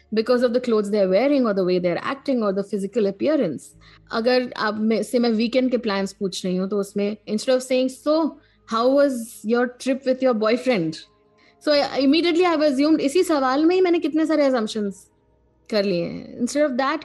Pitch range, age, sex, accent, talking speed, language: 210-280 Hz, 20-39, female, native, 205 wpm, Hindi